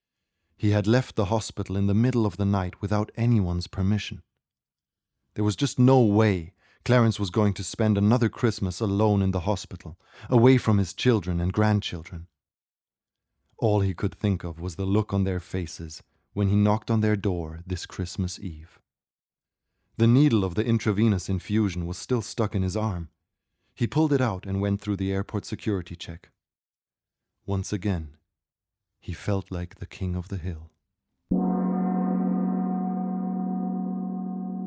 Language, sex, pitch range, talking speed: English, male, 90-115 Hz, 155 wpm